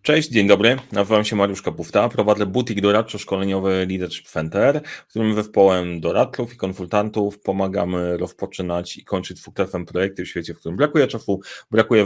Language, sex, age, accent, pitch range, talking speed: Polish, male, 30-49, native, 95-115 Hz, 155 wpm